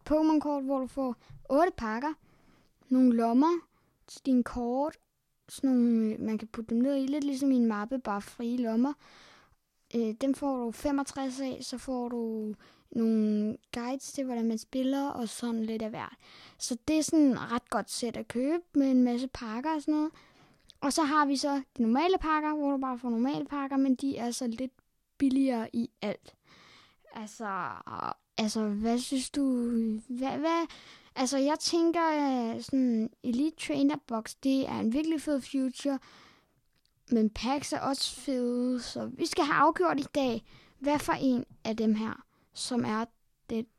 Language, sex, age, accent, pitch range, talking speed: Danish, female, 20-39, native, 230-280 Hz, 175 wpm